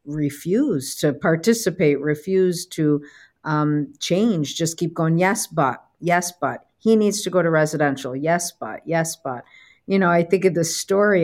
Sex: female